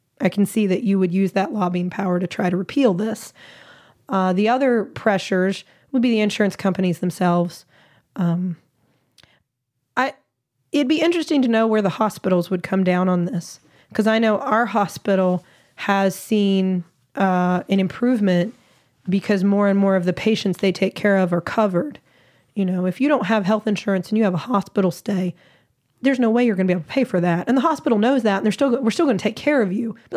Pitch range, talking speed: 180-215 Hz, 210 wpm